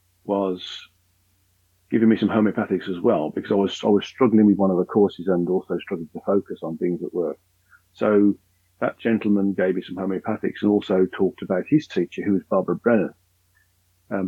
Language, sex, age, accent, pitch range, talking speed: English, male, 50-69, British, 90-105 Hz, 195 wpm